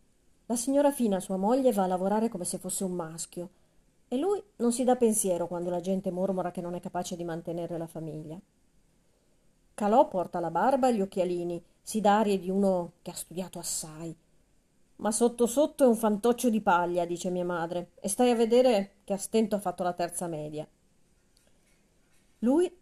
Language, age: Italian, 40-59